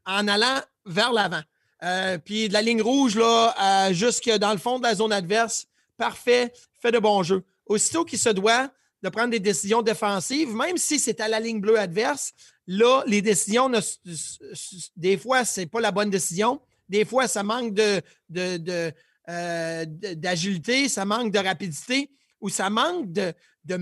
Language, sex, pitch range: French, male, 185-230 Hz